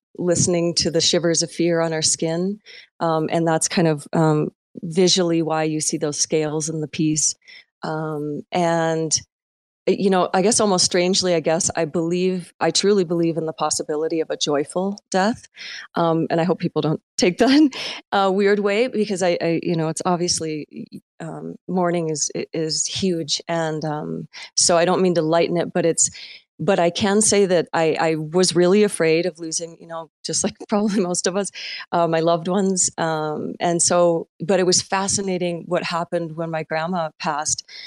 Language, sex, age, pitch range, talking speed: English, female, 30-49, 160-185 Hz, 185 wpm